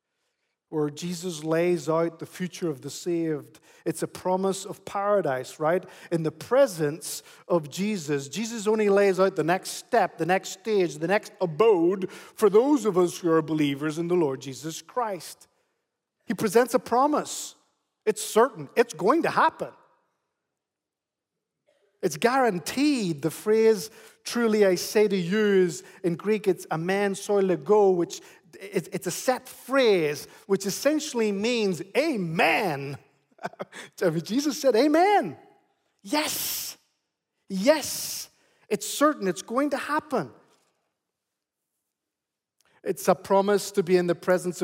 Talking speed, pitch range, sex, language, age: 135 wpm, 170-220 Hz, male, English, 50-69